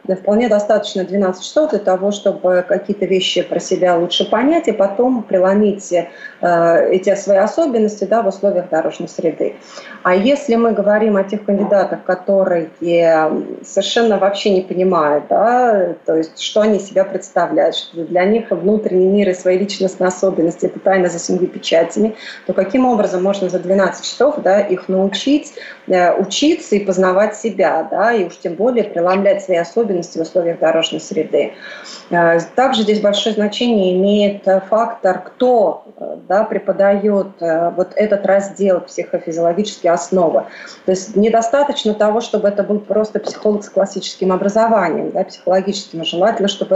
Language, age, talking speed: Russian, 30-49, 145 wpm